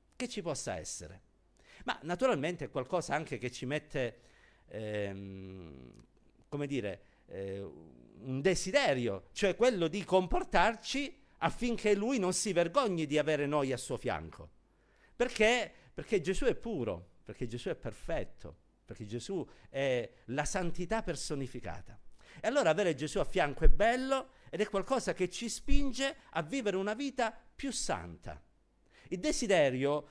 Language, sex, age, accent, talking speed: Italian, male, 50-69, native, 140 wpm